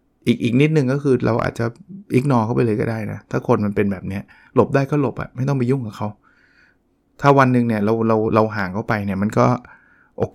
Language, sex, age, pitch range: Thai, male, 20-39, 115-140 Hz